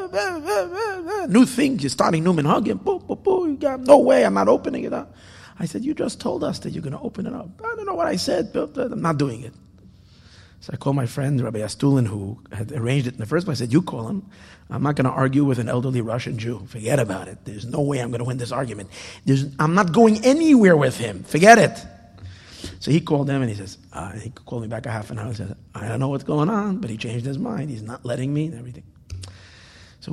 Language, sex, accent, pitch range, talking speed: English, male, American, 110-155 Hz, 255 wpm